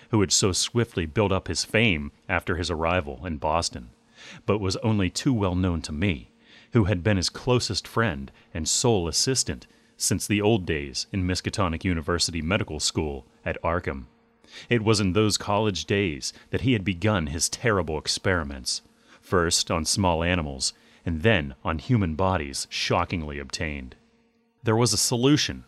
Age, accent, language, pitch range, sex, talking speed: 30-49, American, English, 80-105 Hz, male, 160 wpm